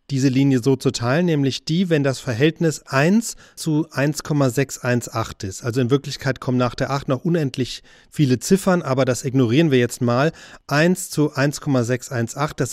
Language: German